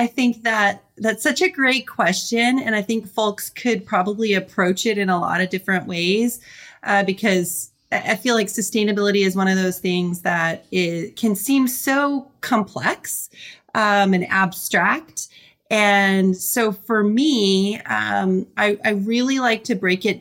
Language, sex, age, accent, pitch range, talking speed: English, female, 30-49, American, 175-215 Hz, 160 wpm